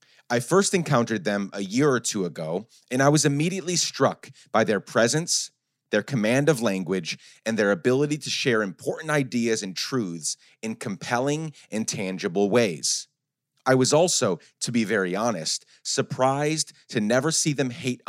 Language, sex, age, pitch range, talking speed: English, male, 30-49, 105-145 Hz, 160 wpm